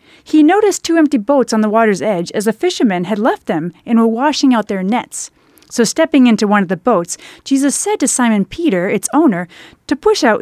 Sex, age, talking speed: female, 30-49, 220 wpm